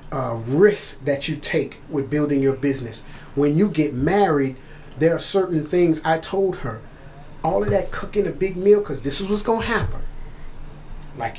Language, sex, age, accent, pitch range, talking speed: English, male, 30-49, American, 145-195 Hz, 185 wpm